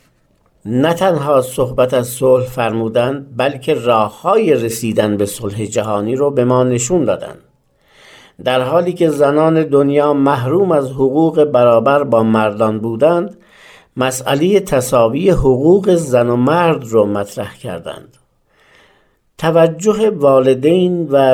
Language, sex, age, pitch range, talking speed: Persian, male, 50-69, 120-160 Hz, 115 wpm